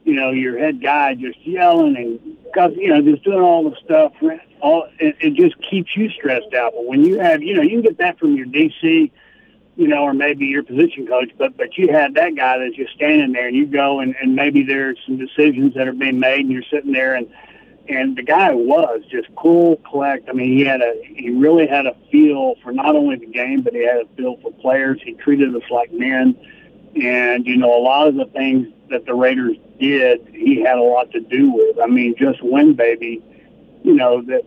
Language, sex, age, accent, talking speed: English, male, 60-79, American, 230 wpm